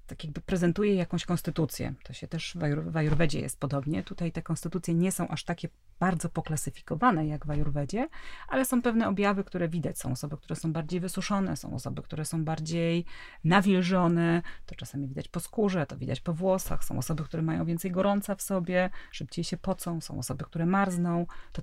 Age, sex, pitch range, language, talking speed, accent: 30-49, female, 155-195 Hz, Polish, 190 wpm, native